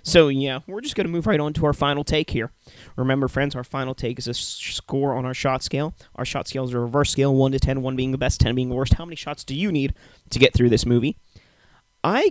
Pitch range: 120-155 Hz